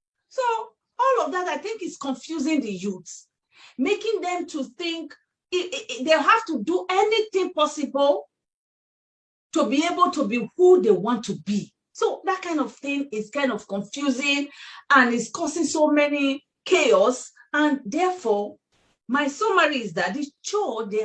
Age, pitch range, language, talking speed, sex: 40-59, 245-350 Hz, English, 155 wpm, female